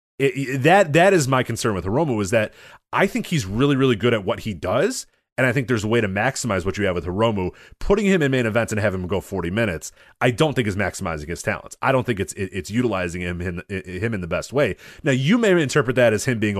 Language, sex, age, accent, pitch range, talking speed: English, male, 30-49, American, 95-135 Hz, 270 wpm